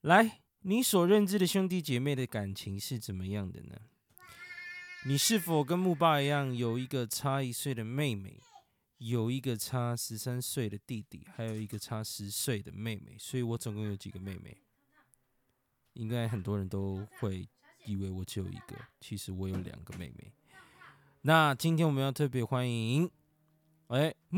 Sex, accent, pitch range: male, native, 105-140 Hz